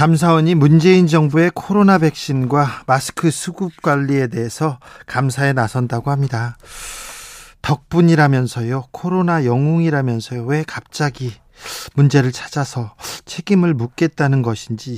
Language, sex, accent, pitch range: Korean, male, native, 135-170 Hz